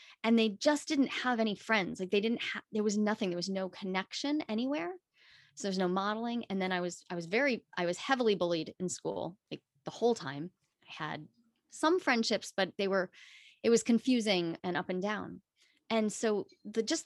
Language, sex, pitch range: English, female, 195-250 Hz